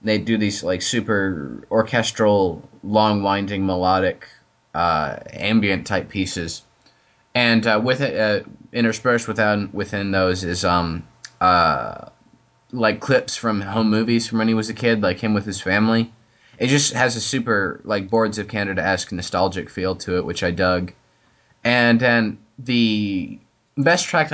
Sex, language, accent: male, English, American